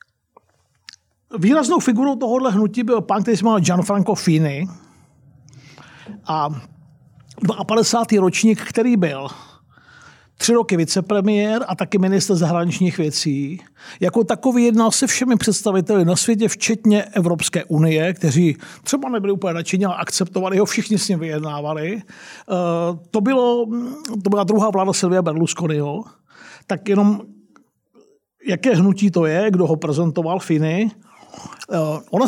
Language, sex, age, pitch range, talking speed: Czech, male, 50-69, 170-220 Hz, 120 wpm